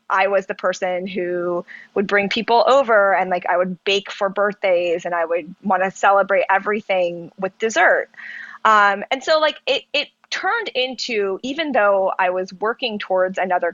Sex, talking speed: female, 170 wpm